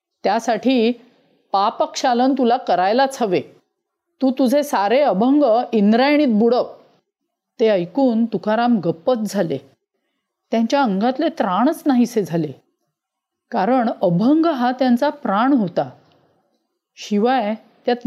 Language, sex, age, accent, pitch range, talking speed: Marathi, female, 40-59, native, 205-270 Hz, 100 wpm